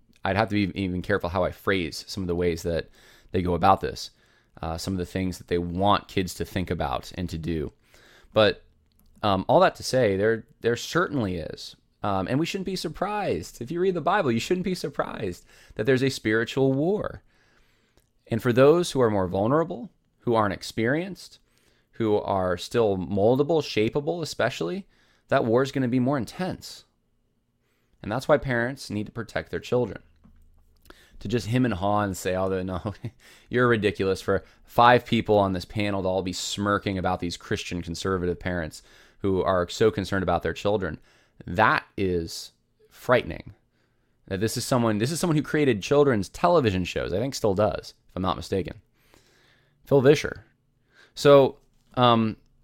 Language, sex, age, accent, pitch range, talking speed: English, male, 20-39, American, 90-125 Hz, 175 wpm